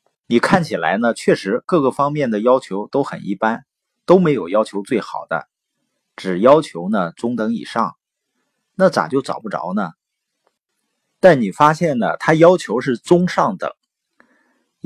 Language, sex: Chinese, male